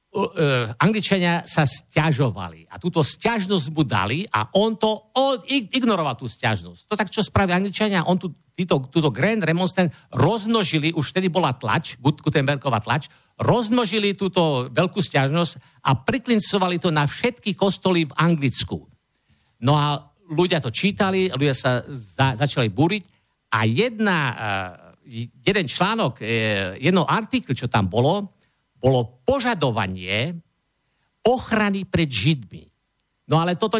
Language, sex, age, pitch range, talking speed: Slovak, male, 50-69, 125-185 Hz, 135 wpm